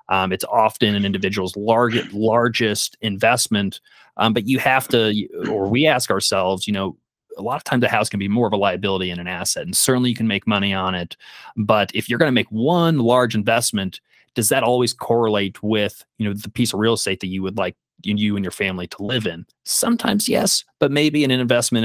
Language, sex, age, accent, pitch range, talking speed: English, male, 30-49, American, 105-120 Hz, 220 wpm